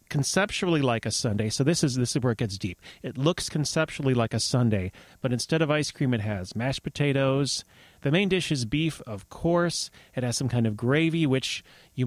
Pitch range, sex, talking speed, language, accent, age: 120-160 Hz, male, 215 wpm, English, American, 30-49